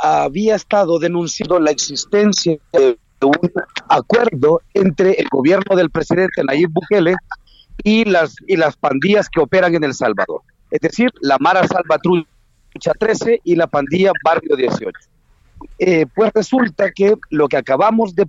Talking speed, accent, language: 150 wpm, Mexican, Spanish